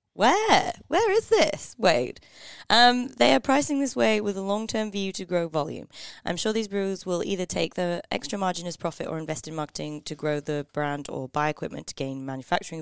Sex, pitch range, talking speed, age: female, 135-170 Hz, 205 wpm, 20-39